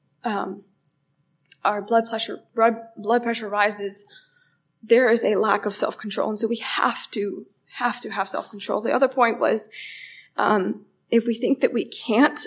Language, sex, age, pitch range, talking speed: English, female, 20-39, 200-245 Hz, 165 wpm